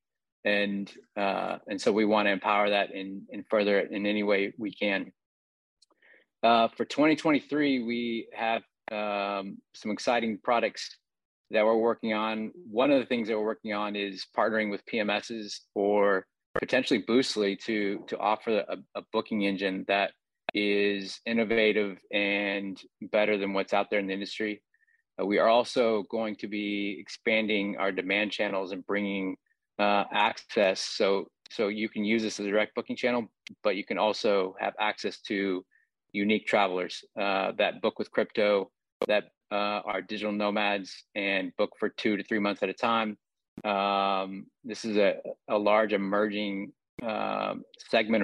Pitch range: 100-110 Hz